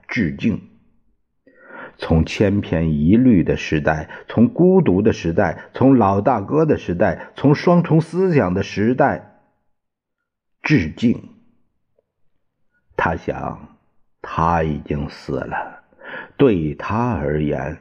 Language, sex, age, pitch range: Chinese, male, 50-69, 80-120 Hz